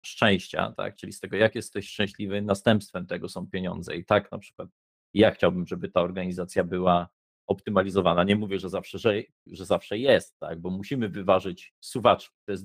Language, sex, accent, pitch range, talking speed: Polish, male, native, 90-105 Hz, 170 wpm